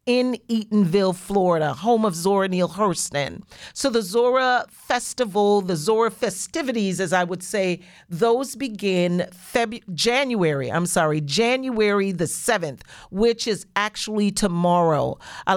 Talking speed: 125 wpm